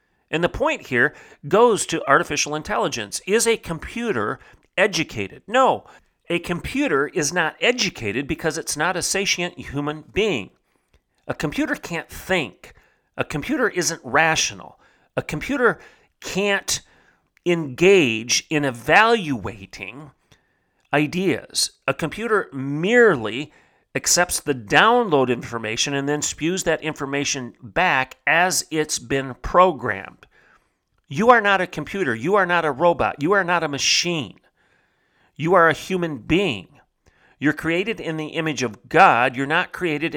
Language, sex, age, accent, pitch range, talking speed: English, male, 40-59, American, 135-185 Hz, 130 wpm